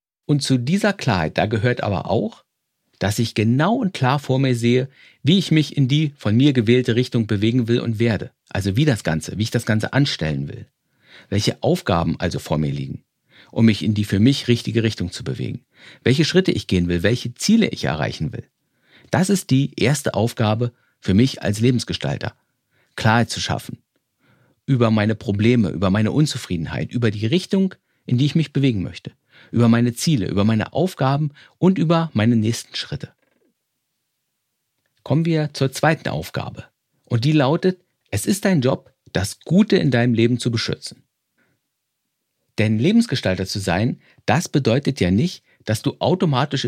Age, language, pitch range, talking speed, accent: 50-69, German, 110-150 Hz, 170 wpm, German